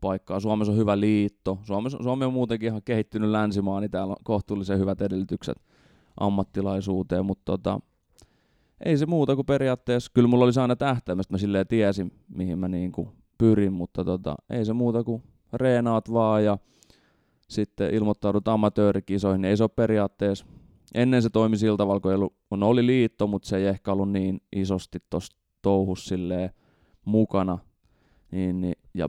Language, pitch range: Finnish, 95-110 Hz